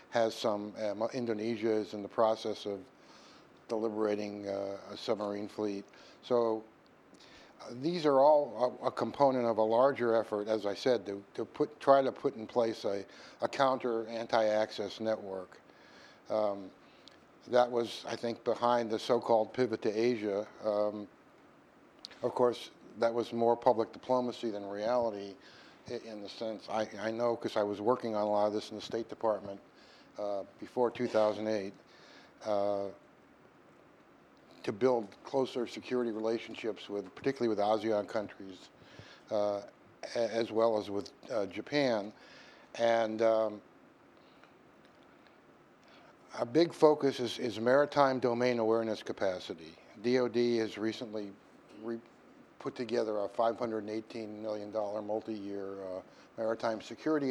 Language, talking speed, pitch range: English, 135 wpm, 105-120 Hz